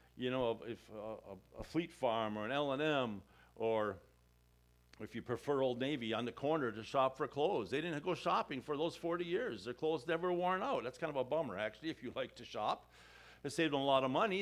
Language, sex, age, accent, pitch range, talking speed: English, male, 50-69, American, 115-160 Hz, 230 wpm